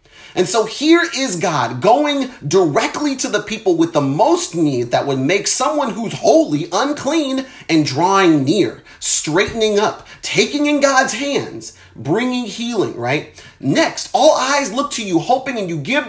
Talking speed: 160 wpm